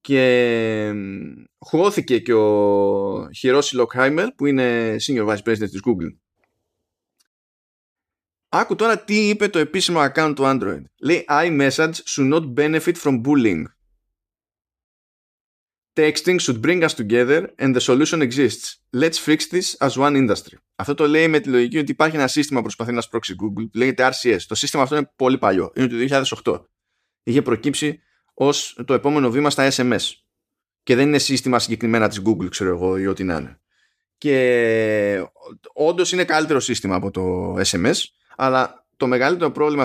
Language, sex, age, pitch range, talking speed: Greek, male, 20-39, 110-155 Hz, 155 wpm